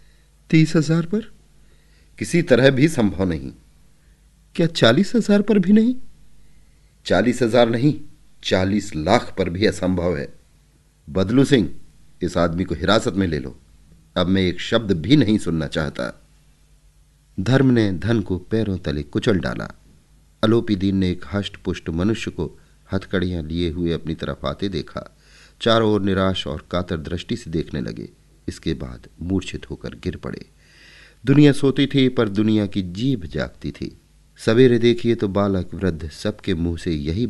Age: 40-59